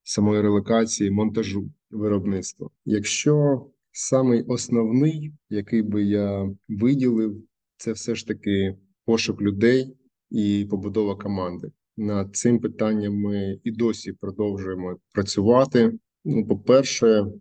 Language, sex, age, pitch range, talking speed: Ukrainian, male, 20-39, 100-115 Hz, 105 wpm